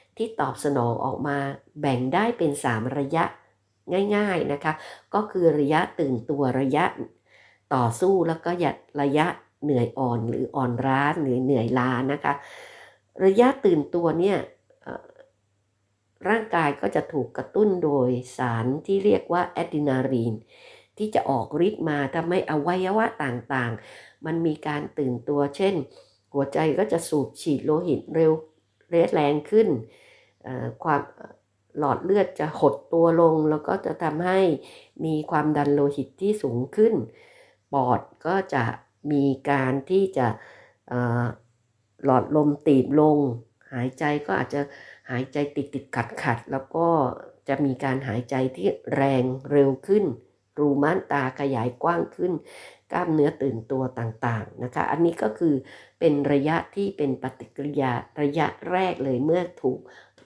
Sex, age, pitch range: female, 60-79, 130-165 Hz